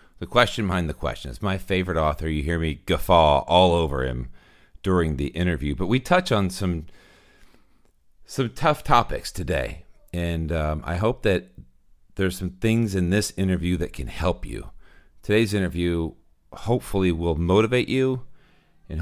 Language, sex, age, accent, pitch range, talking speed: English, male, 40-59, American, 85-110 Hz, 160 wpm